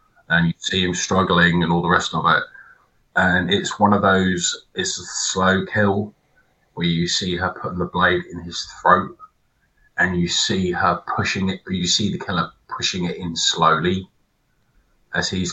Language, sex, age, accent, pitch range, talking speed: English, male, 30-49, British, 90-105 Hz, 180 wpm